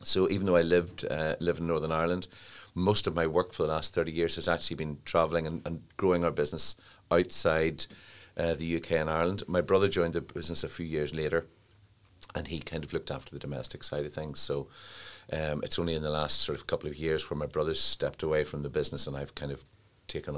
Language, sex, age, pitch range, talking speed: English, male, 40-59, 75-85 Hz, 235 wpm